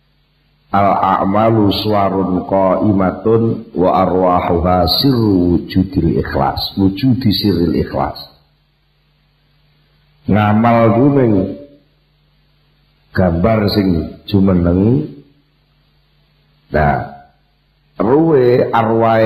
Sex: male